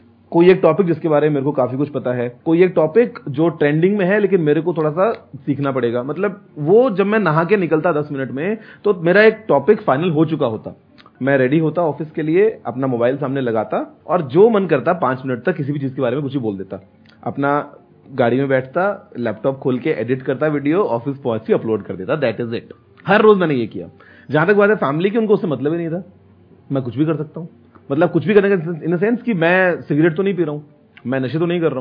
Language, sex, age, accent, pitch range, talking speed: Hindi, male, 30-49, native, 130-190 Hz, 255 wpm